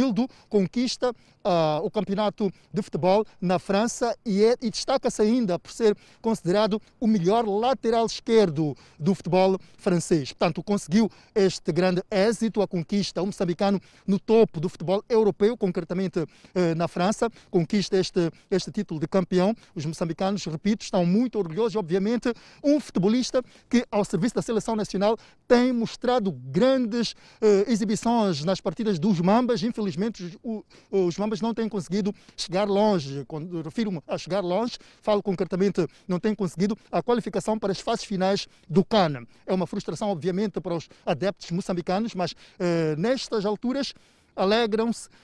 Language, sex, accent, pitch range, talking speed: Portuguese, male, Brazilian, 180-215 Hz, 145 wpm